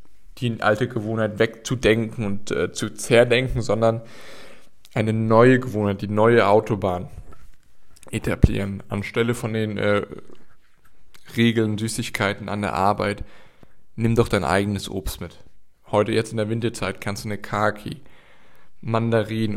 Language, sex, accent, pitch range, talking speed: German, male, German, 100-115 Hz, 125 wpm